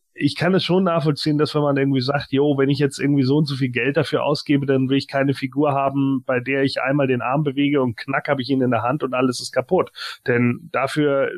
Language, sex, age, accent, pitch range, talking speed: German, male, 30-49, German, 130-155 Hz, 260 wpm